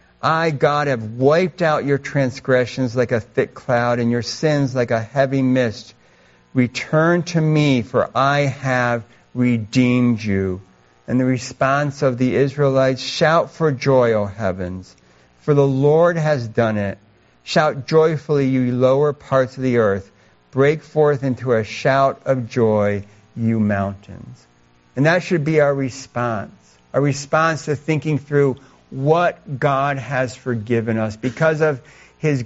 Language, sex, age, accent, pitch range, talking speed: English, male, 60-79, American, 110-145 Hz, 145 wpm